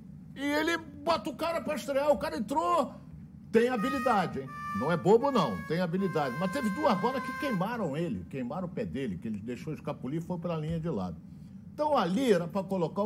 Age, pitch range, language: 60-79, 175-215 Hz, Portuguese